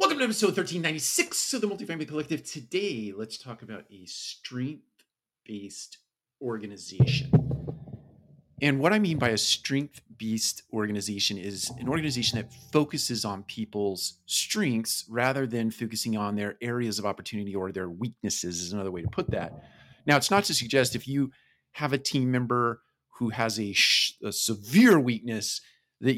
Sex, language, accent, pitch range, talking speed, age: male, English, American, 105-140 Hz, 150 wpm, 40-59